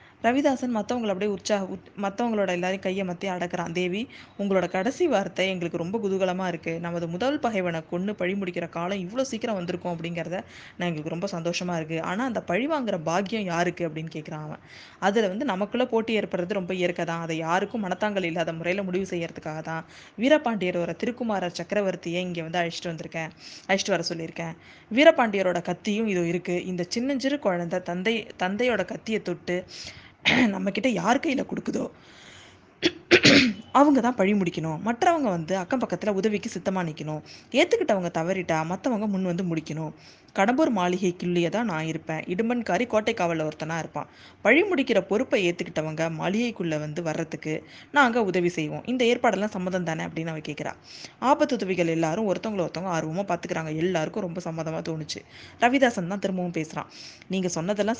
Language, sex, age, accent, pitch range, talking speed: Tamil, female, 20-39, native, 170-215 Hz, 145 wpm